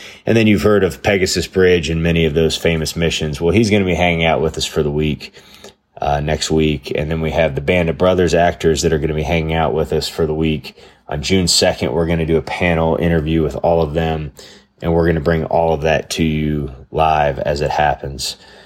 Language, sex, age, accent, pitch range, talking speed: English, male, 30-49, American, 75-85 Hz, 250 wpm